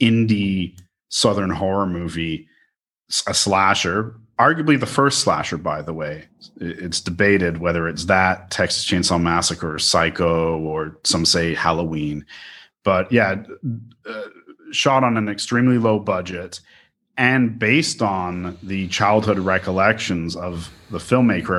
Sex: male